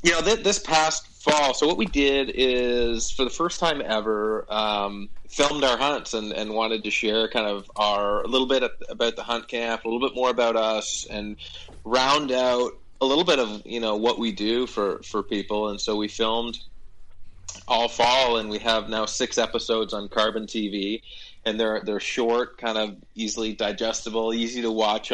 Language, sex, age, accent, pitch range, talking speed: English, male, 30-49, American, 105-120 Hz, 200 wpm